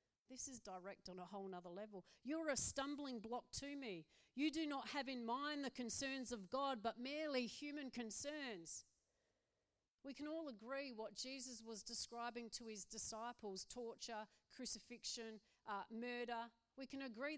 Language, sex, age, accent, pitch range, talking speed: English, female, 40-59, Australian, 225-285 Hz, 160 wpm